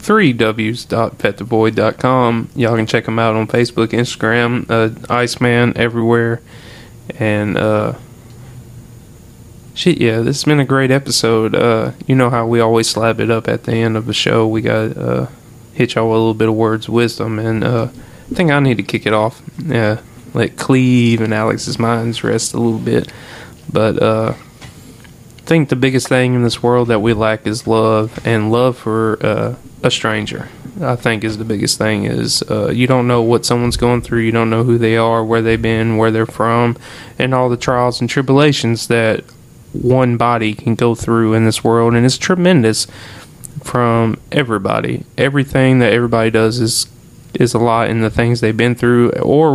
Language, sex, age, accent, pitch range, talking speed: English, male, 20-39, American, 110-125 Hz, 195 wpm